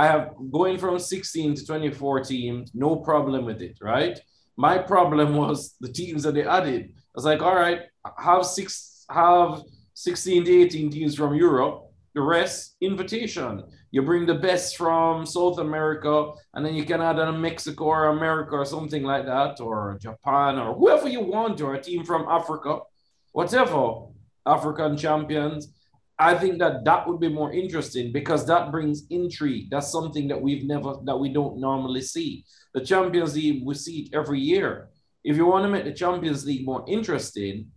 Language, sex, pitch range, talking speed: English, male, 140-175 Hz, 180 wpm